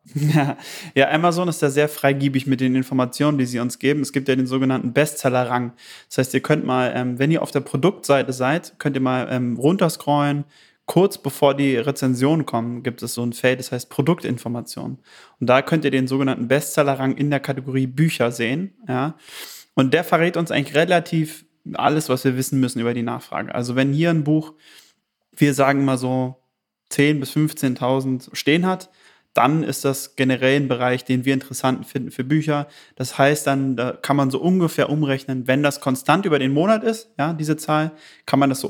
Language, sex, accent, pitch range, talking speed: German, male, German, 130-155 Hz, 195 wpm